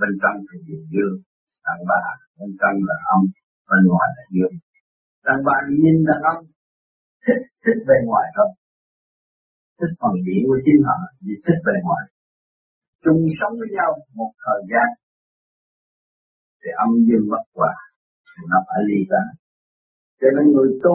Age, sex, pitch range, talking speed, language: 50-69, male, 120-200 Hz, 140 wpm, Vietnamese